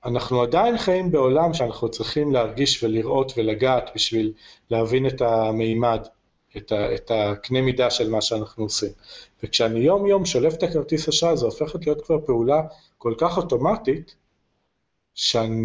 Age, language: 40-59, English